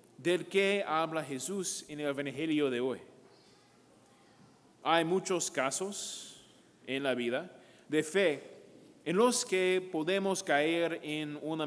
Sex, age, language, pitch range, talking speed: male, 30-49, English, 150-190 Hz, 125 wpm